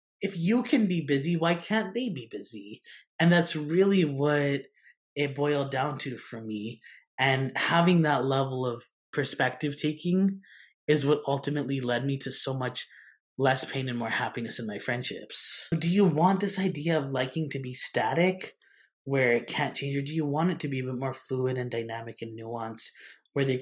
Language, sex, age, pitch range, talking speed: English, male, 20-39, 125-160 Hz, 190 wpm